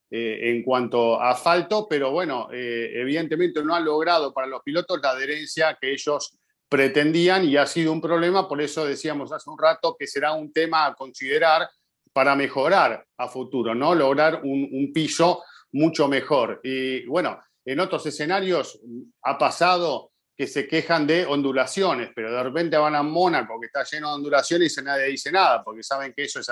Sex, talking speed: male, 180 wpm